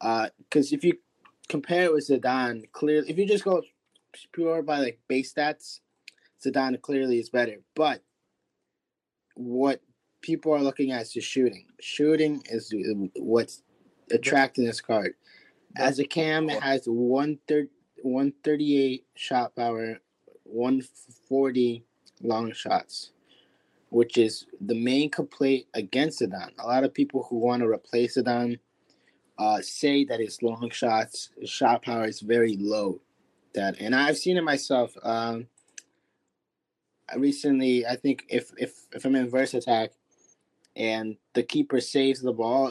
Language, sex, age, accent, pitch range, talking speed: English, male, 20-39, American, 115-140 Hz, 135 wpm